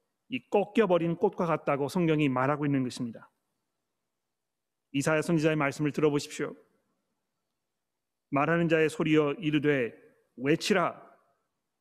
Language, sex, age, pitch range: Korean, male, 40-59, 140-180 Hz